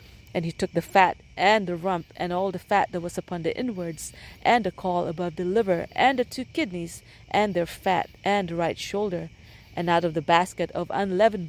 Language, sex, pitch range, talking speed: English, female, 165-200 Hz, 215 wpm